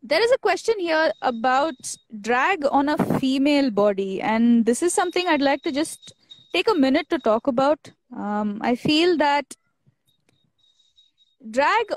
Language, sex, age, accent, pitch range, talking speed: English, female, 20-39, Indian, 235-310 Hz, 150 wpm